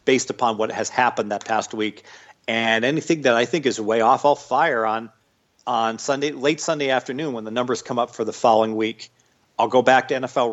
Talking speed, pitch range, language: 215 wpm, 115-140 Hz, English